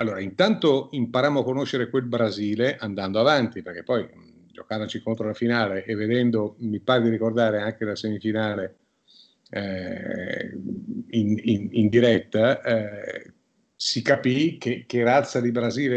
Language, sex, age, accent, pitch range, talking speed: Italian, male, 50-69, native, 110-135 Hz, 140 wpm